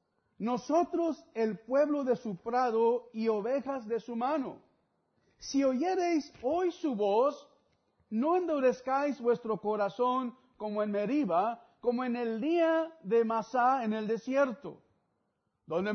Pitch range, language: 215-280 Hz, English